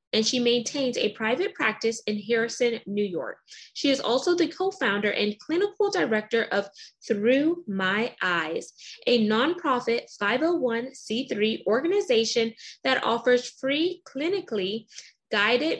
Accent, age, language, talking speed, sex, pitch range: American, 20-39, English, 120 wpm, female, 205-265 Hz